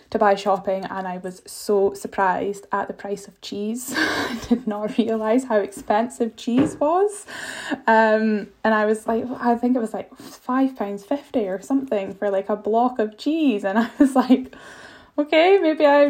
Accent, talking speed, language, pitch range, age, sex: British, 175 wpm, English, 195-225 Hz, 10-29, female